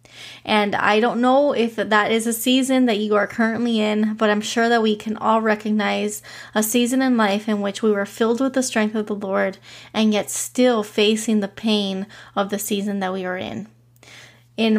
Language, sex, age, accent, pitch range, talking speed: English, female, 20-39, American, 205-230 Hz, 205 wpm